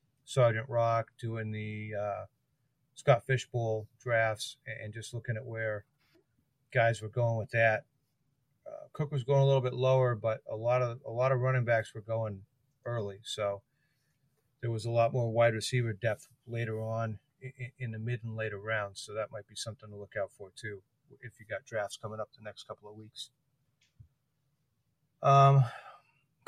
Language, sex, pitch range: English, male, 115-135 Hz